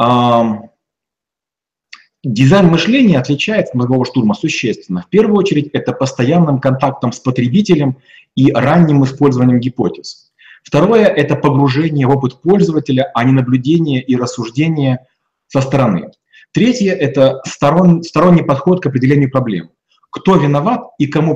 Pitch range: 130-170 Hz